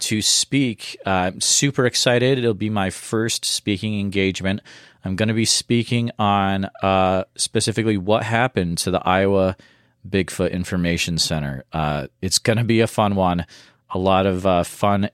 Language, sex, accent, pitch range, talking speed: English, male, American, 95-115 Hz, 165 wpm